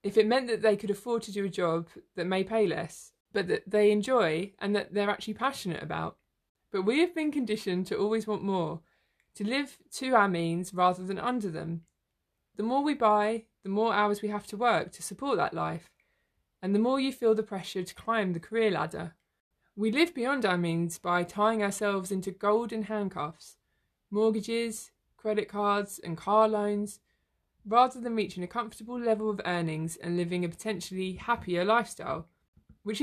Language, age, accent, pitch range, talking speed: English, 20-39, British, 185-225 Hz, 185 wpm